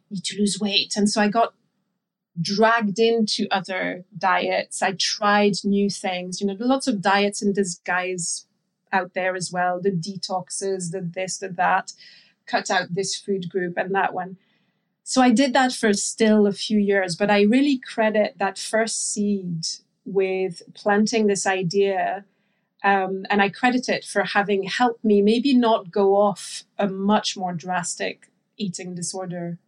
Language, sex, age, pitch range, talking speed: English, female, 30-49, 190-210 Hz, 160 wpm